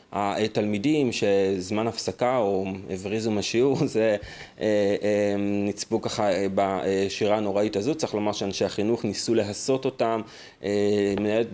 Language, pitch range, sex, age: Hebrew, 105-125 Hz, male, 30-49